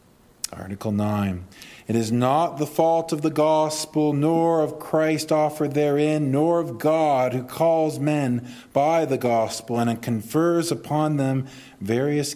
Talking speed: 145 wpm